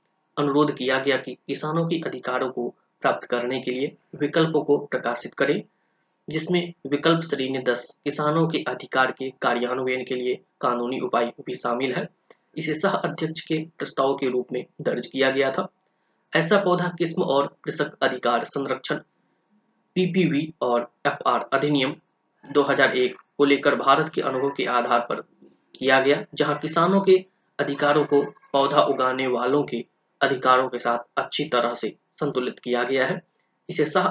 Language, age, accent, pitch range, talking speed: Hindi, 20-39, native, 130-165 Hz, 120 wpm